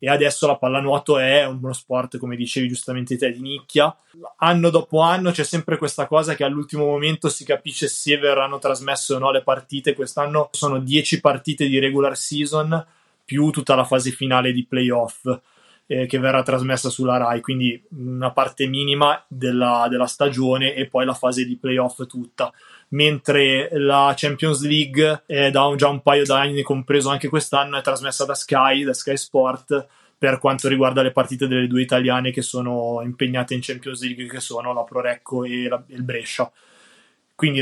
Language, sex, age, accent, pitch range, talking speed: Italian, male, 20-39, native, 130-145 Hz, 175 wpm